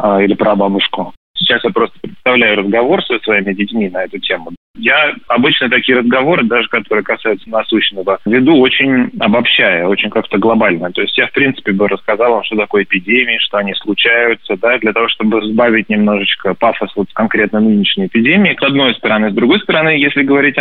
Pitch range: 100-120 Hz